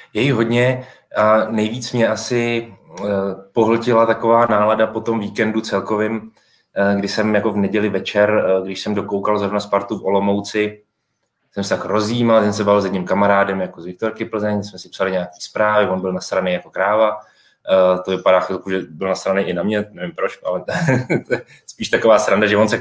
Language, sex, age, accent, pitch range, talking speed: Czech, male, 20-39, native, 100-115 Hz, 190 wpm